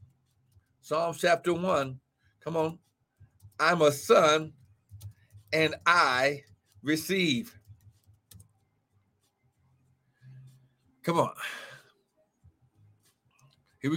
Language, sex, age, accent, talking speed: English, male, 60-79, American, 60 wpm